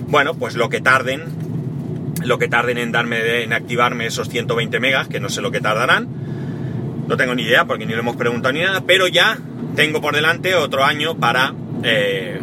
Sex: male